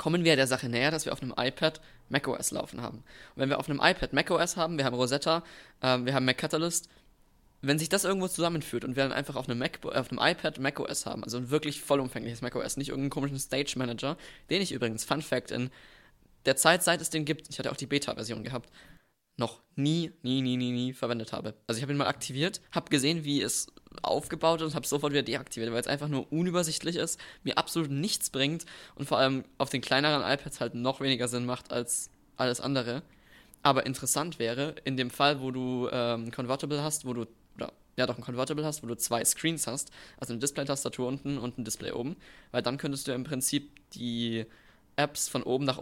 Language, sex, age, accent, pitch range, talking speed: German, male, 20-39, German, 125-150 Hz, 220 wpm